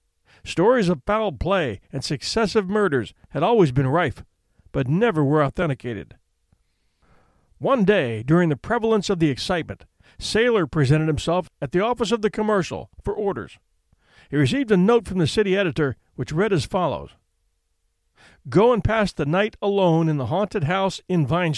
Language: English